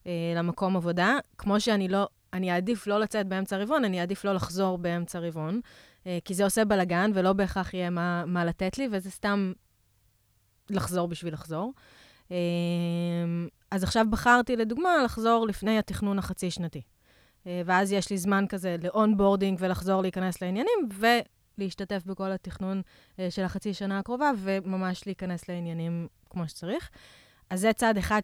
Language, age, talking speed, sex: Hebrew, 20-39, 140 wpm, female